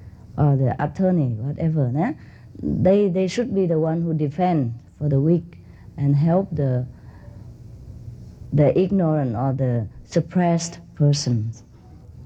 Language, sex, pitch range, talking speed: English, female, 135-190 Hz, 120 wpm